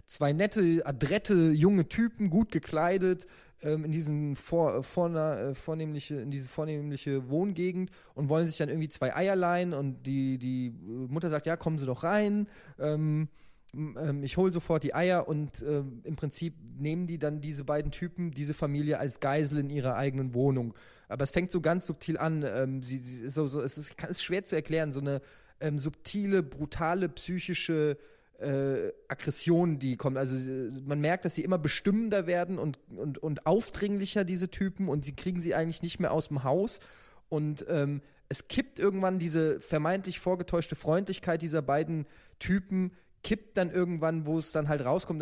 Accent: German